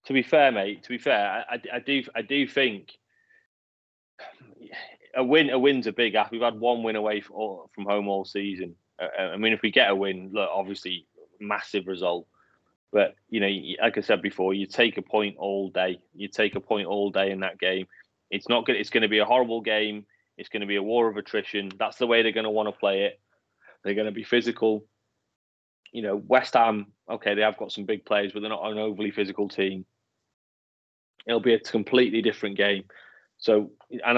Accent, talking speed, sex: British, 210 wpm, male